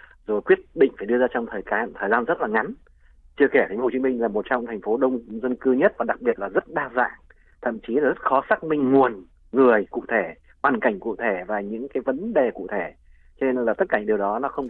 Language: Vietnamese